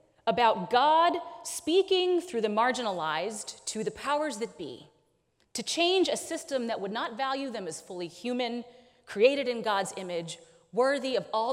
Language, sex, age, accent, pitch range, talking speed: English, female, 30-49, American, 220-320 Hz, 155 wpm